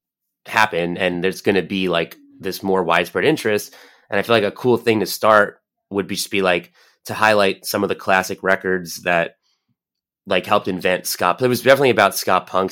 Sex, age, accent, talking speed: male, 30-49, American, 205 wpm